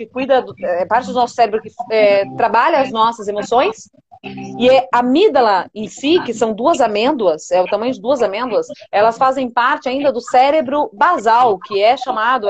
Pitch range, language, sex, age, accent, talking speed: 235-330 Hz, Portuguese, female, 30-49, Brazilian, 190 wpm